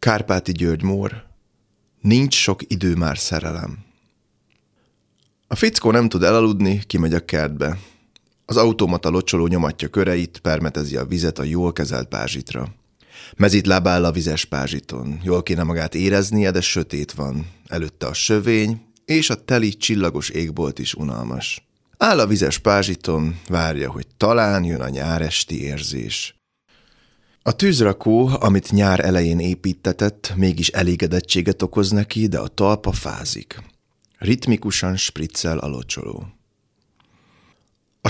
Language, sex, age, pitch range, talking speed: Hungarian, male, 30-49, 80-105 Hz, 125 wpm